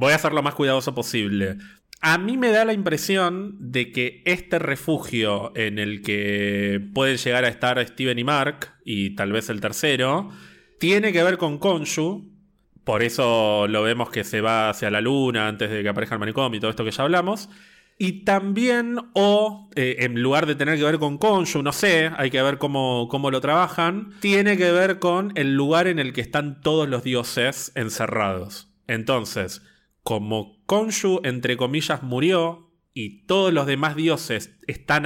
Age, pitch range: 30-49, 115-160 Hz